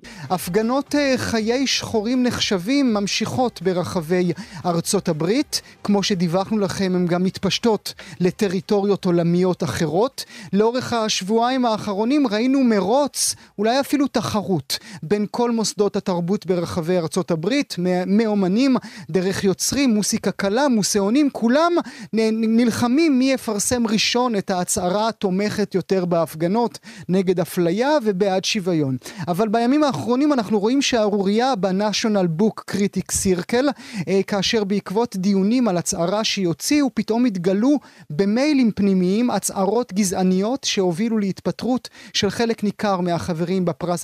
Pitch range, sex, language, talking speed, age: 180-230 Hz, male, Hebrew, 110 wpm, 30-49